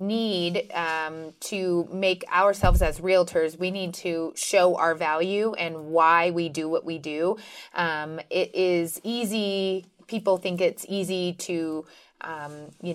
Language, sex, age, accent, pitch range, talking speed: English, female, 30-49, American, 160-185 Hz, 145 wpm